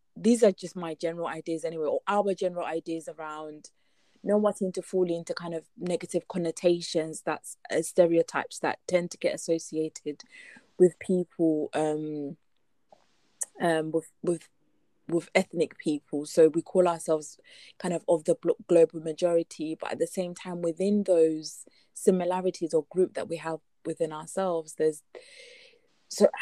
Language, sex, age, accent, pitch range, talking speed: English, female, 20-39, British, 165-185 Hz, 155 wpm